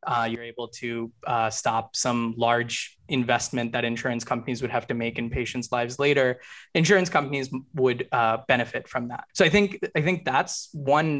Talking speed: 180 wpm